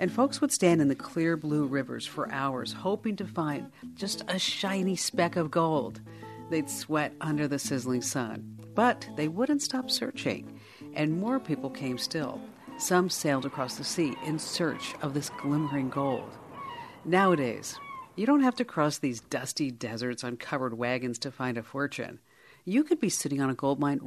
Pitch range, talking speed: 135-180 Hz, 175 wpm